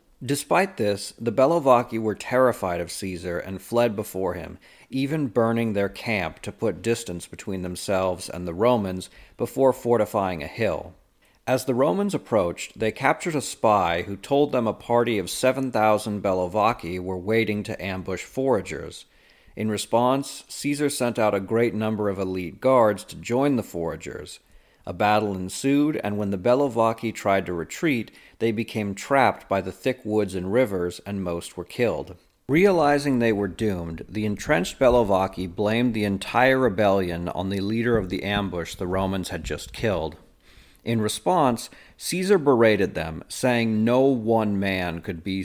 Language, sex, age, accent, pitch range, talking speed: English, male, 40-59, American, 90-120 Hz, 160 wpm